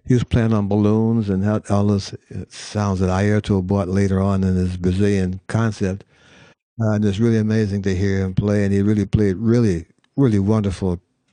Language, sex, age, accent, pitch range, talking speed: English, male, 60-79, American, 95-110 Hz, 175 wpm